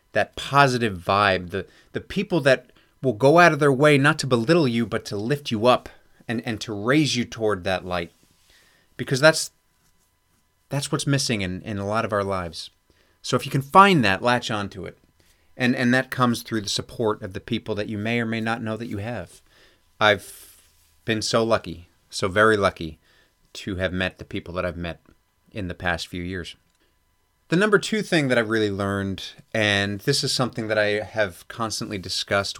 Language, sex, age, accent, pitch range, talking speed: English, male, 30-49, American, 95-135 Hz, 200 wpm